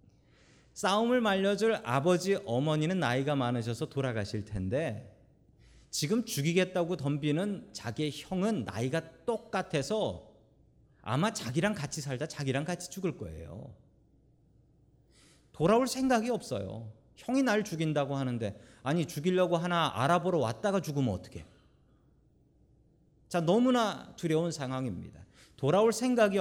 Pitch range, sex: 120-190 Hz, male